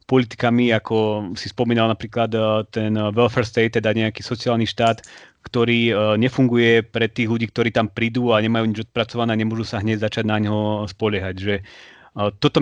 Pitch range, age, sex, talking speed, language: 110-130 Hz, 30-49, male, 160 wpm, Slovak